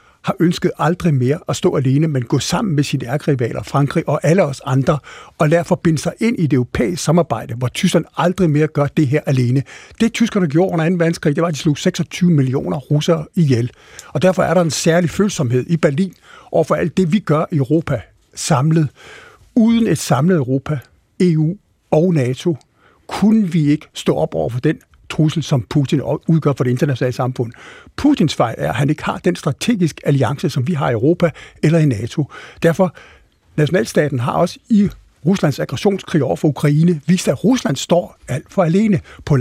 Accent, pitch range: native, 140-175 Hz